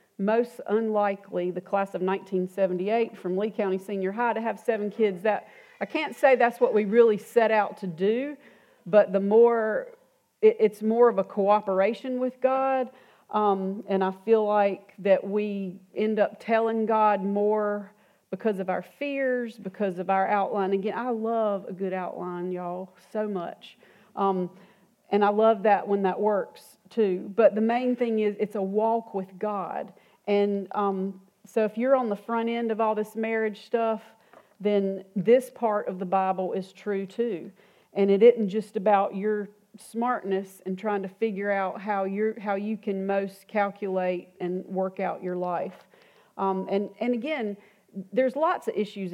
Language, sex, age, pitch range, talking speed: English, female, 40-59, 195-225 Hz, 170 wpm